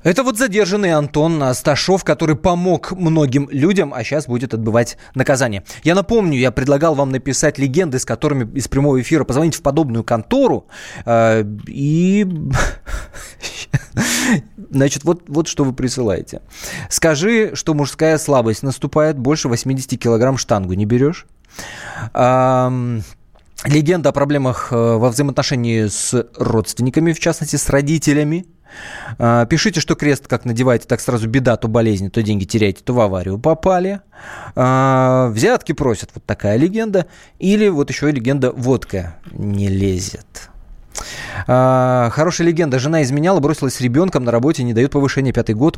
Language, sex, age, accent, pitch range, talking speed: Russian, male, 20-39, native, 115-150 Hz, 135 wpm